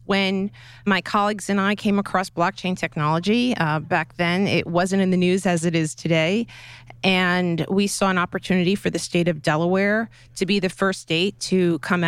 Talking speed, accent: 190 wpm, American